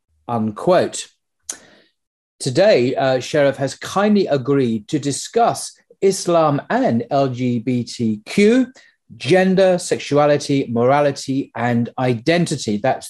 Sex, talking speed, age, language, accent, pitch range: male, 85 wpm, 40-59, English, British, 120-170 Hz